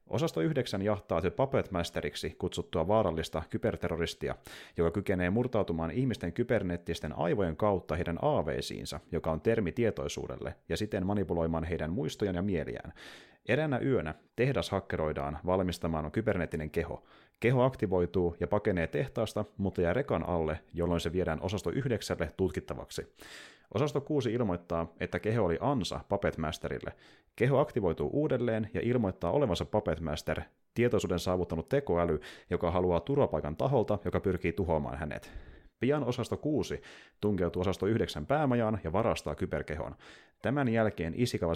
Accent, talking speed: native, 125 wpm